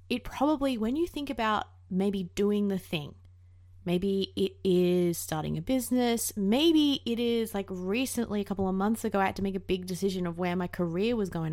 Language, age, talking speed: English, 20-39, 205 wpm